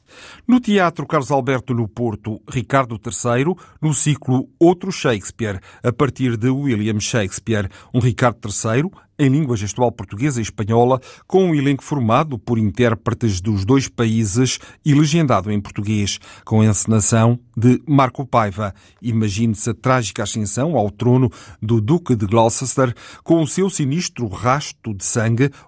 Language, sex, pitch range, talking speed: Portuguese, male, 110-135 Hz, 145 wpm